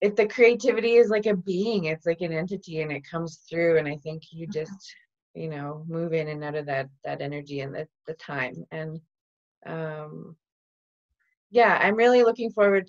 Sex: female